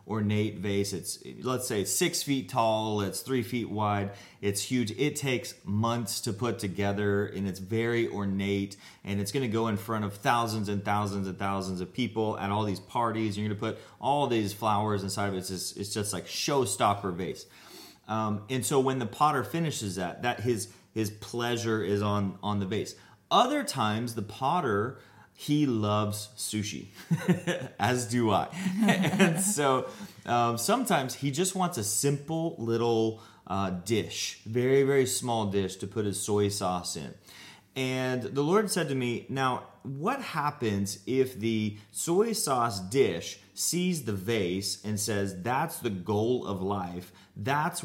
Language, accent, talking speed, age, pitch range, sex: English, American, 170 wpm, 30-49, 100-130 Hz, male